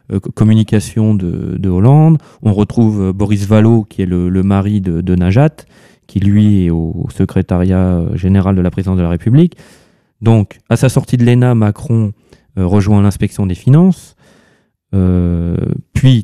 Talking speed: 160 wpm